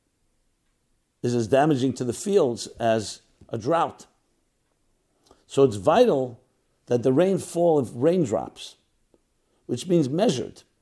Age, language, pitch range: 60-79, English, 115-145 Hz